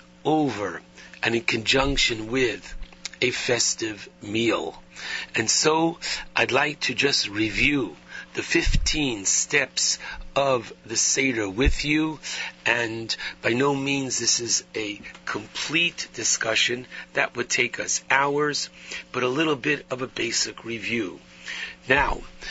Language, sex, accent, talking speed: English, male, American, 125 wpm